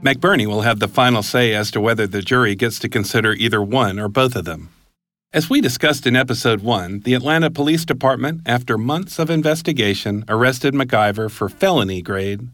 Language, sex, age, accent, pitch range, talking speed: English, male, 50-69, American, 105-135 Hz, 180 wpm